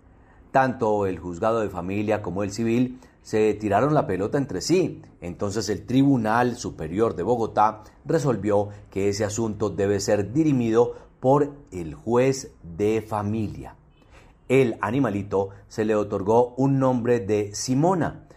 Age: 40-59